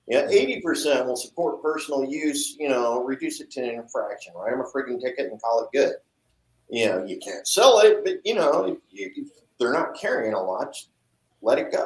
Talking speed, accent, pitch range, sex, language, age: 195 wpm, American, 110-150 Hz, male, English, 50-69